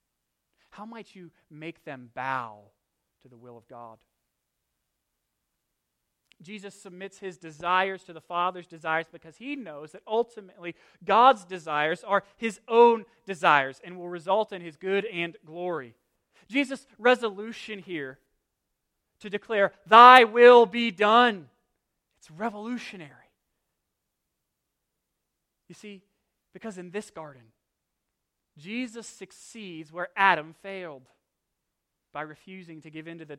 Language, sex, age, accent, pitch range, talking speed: English, male, 30-49, American, 150-210 Hz, 120 wpm